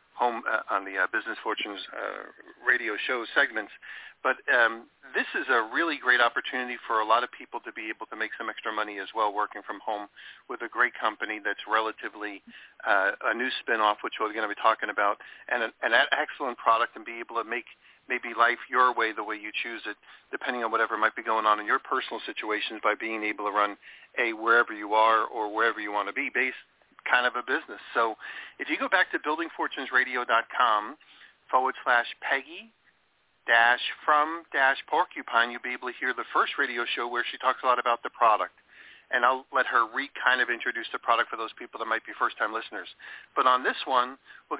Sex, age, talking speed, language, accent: male, 40-59, 215 wpm, English, American